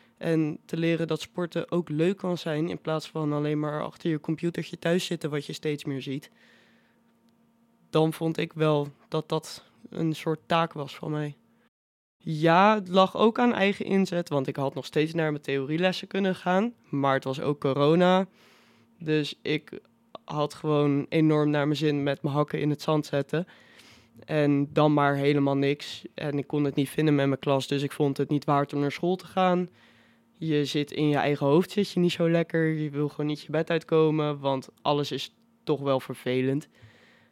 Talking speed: 195 wpm